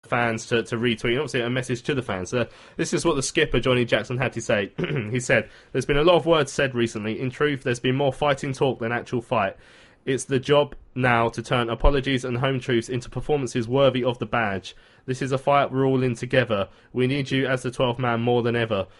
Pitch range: 115-130 Hz